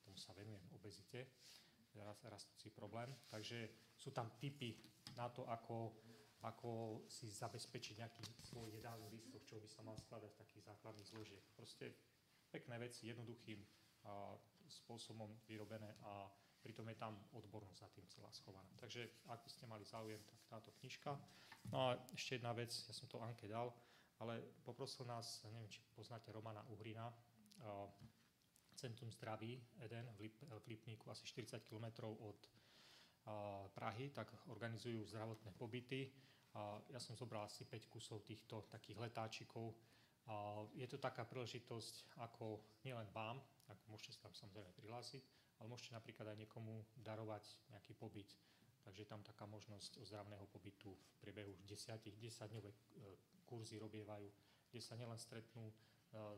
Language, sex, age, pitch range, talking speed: Slovak, male, 30-49, 105-120 Hz, 150 wpm